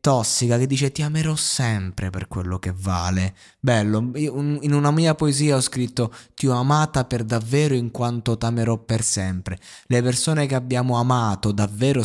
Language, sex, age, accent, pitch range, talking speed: Italian, male, 20-39, native, 105-135 Hz, 170 wpm